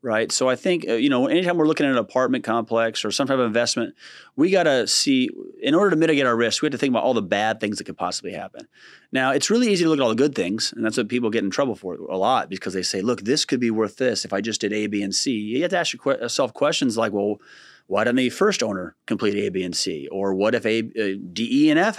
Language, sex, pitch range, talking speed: English, male, 110-150 Hz, 285 wpm